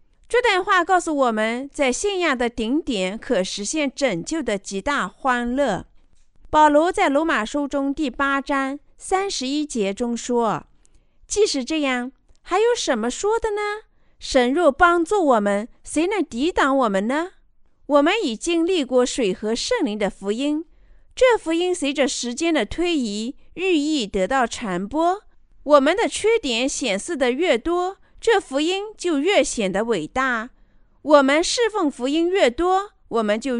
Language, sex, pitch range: Chinese, female, 240-340 Hz